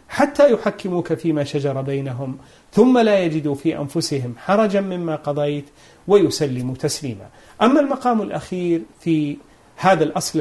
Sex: male